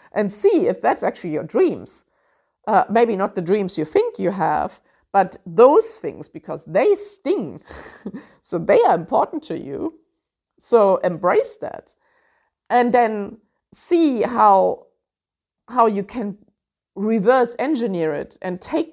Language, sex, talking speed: English, female, 135 wpm